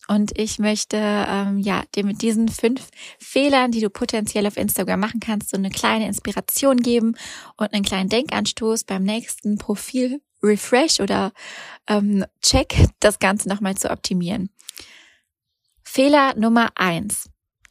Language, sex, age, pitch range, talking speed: German, female, 20-39, 200-245 Hz, 130 wpm